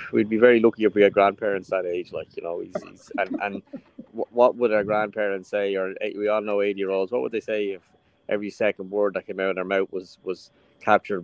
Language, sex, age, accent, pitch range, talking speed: English, male, 20-39, Irish, 95-115 Hz, 235 wpm